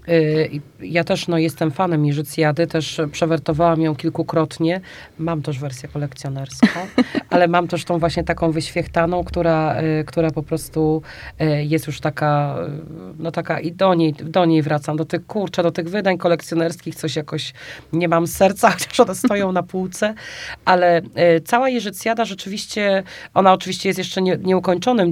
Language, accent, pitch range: Polish, native, 160-185 Hz